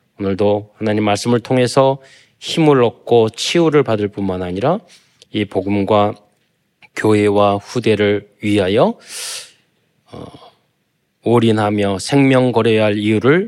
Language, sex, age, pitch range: Korean, male, 20-39, 100-125 Hz